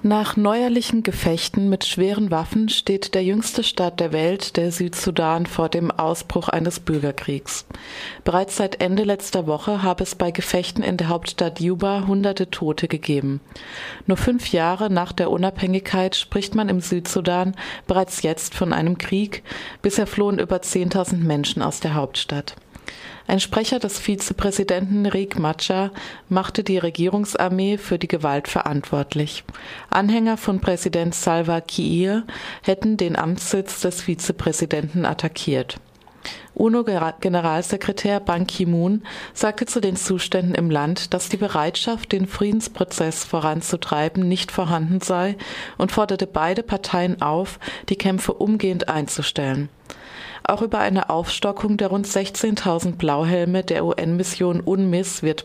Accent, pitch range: German, 170-200 Hz